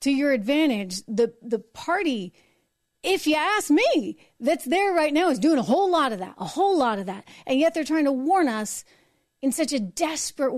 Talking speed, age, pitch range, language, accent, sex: 210 wpm, 40-59, 215-300 Hz, English, American, female